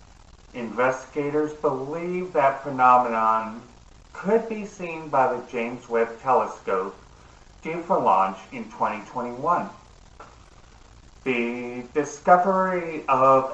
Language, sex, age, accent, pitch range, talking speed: English, male, 40-59, American, 115-155 Hz, 90 wpm